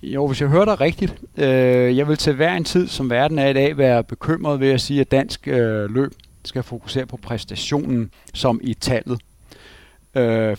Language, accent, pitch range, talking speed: Danish, native, 105-130 Hz, 200 wpm